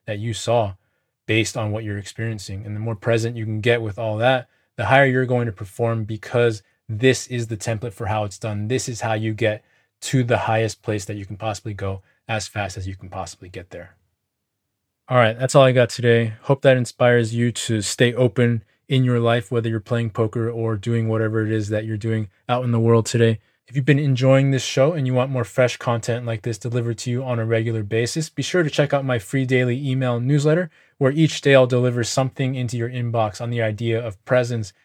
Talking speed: 230 wpm